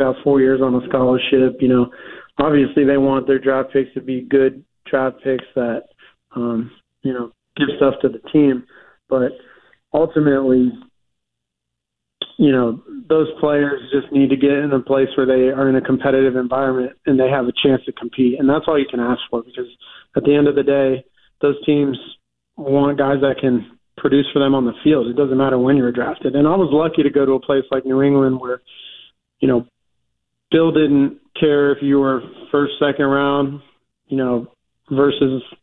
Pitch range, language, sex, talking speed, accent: 125-140 Hz, English, male, 190 wpm, American